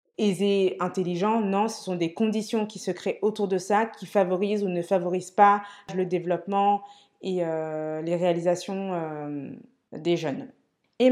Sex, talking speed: female, 155 wpm